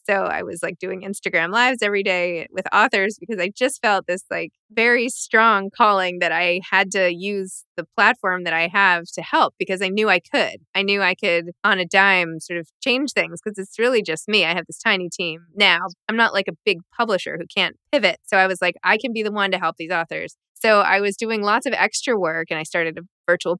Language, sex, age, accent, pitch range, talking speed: English, female, 20-39, American, 175-210 Hz, 240 wpm